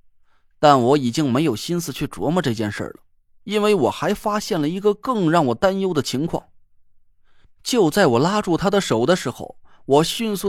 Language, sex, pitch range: Chinese, male, 145-210 Hz